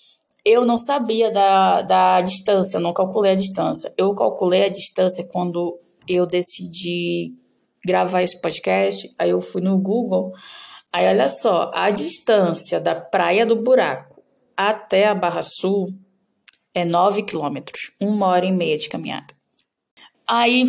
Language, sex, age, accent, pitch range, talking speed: Portuguese, female, 10-29, Brazilian, 175-220 Hz, 140 wpm